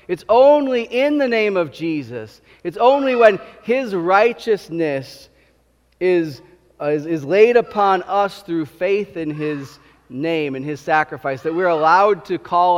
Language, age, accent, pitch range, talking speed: English, 30-49, American, 140-205 Hz, 150 wpm